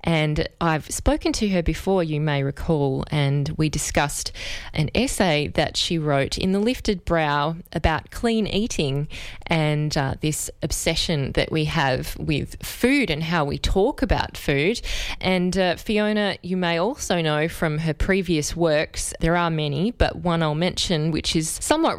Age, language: 20-39, English